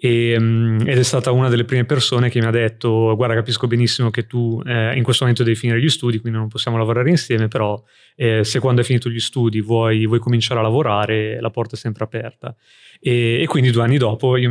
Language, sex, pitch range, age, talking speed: Italian, male, 115-125 Hz, 20-39, 225 wpm